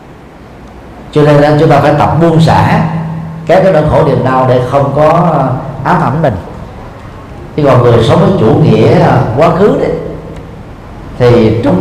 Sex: male